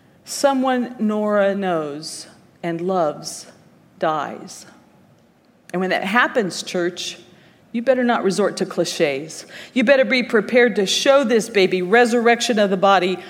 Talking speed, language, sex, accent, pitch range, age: 130 wpm, English, female, American, 185-250 Hz, 40-59